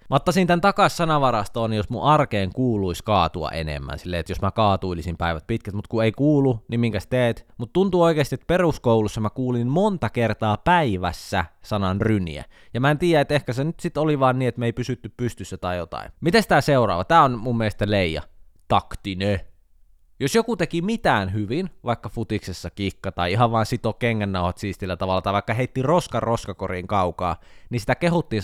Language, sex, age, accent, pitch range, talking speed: Finnish, male, 20-39, native, 90-130 Hz, 190 wpm